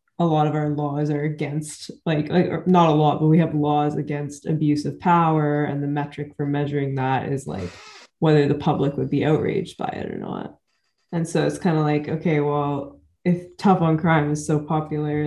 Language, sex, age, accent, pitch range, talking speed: English, female, 20-39, American, 145-175 Hz, 210 wpm